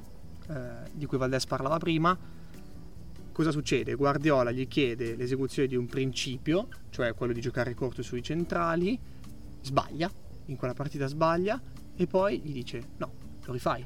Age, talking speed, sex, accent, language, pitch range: 30-49, 145 wpm, male, native, Italian, 120-140 Hz